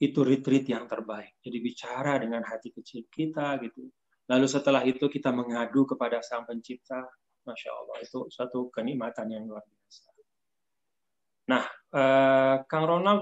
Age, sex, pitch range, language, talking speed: 20-39, male, 120-150 Hz, Indonesian, 140 wpm